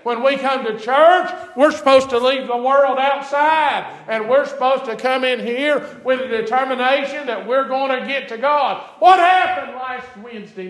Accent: American